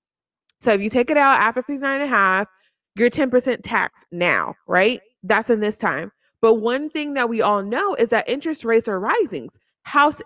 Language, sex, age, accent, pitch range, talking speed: English, female, 20-39, American, 190-250 Hz, 200 wpm